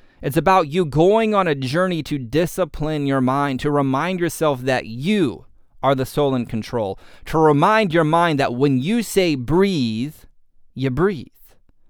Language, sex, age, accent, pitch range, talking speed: English, male, 30-49, American, 120-165 Hz, 160 wpm